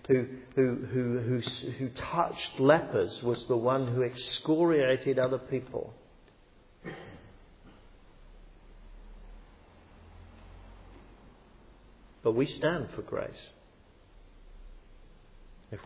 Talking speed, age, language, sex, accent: 75 wpm, 50-69, English, male, British